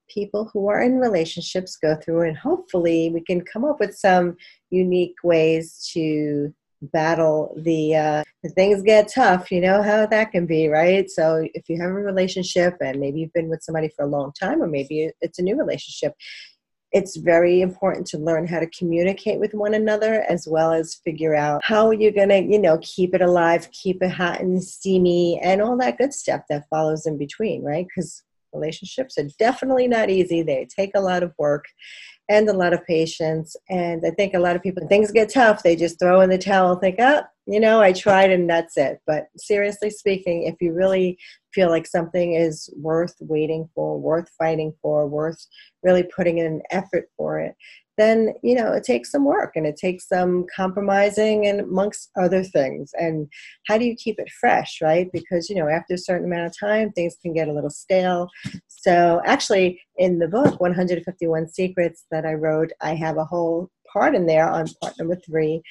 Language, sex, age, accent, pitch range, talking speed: English, female, 40-59, American, 160-200 Hz, 200 wpm